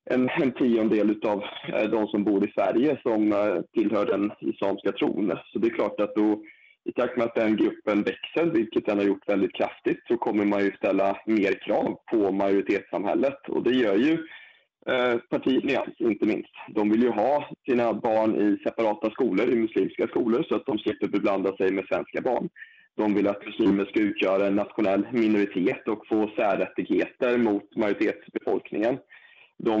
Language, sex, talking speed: Swedish, male, 170 wpm